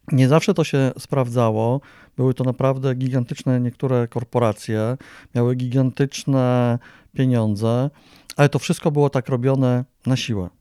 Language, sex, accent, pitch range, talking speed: Polish, male, native, 115-140 Hz, 125 wpm